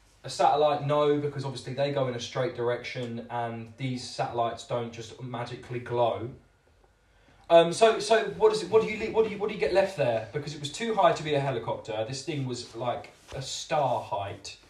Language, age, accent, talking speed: English, 20-39, British, 210 wpm